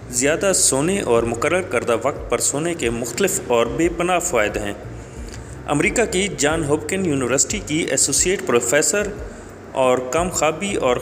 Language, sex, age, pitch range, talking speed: Urdu, male, 30-49, 115-160 Hz, 145 wpm